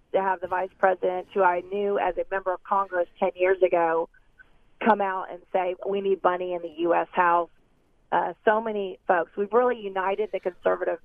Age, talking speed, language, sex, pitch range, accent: 40-59, 195 wpm, English, female, 180-205 Hz, American